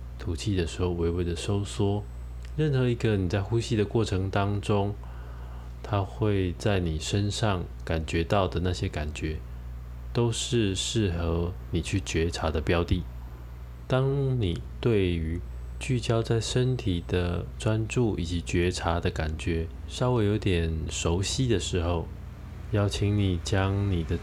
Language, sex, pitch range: Chinese, male, 80-105 Hz